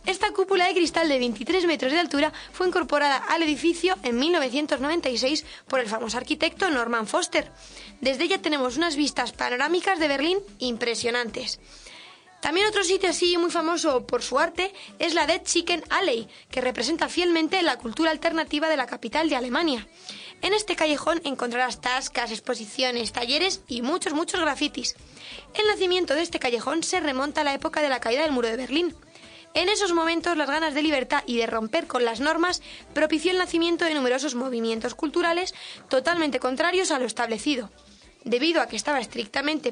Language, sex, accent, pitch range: Spanish, female, Spanish, 250-335 Hz